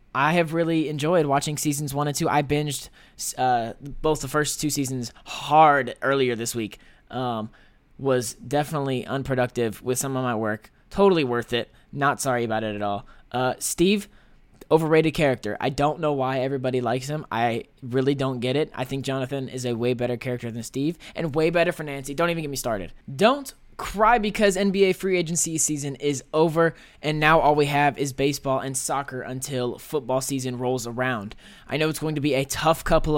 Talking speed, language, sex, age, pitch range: 195 wpm, English, male, 20-39, 130-160 Hz